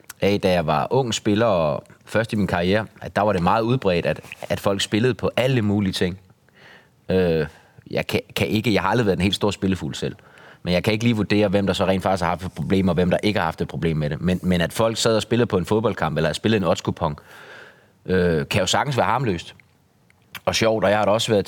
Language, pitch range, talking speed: Danish, 85-105 Hz, 250 wpm